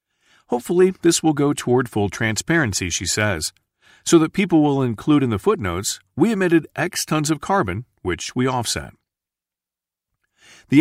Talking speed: 150 wpm